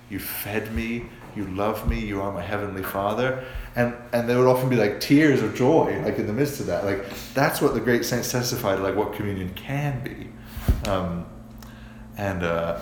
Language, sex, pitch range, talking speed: English, male, 105-125 Hz, 195 wpm